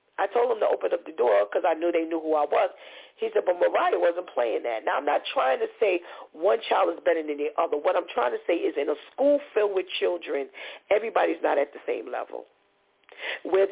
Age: 50-69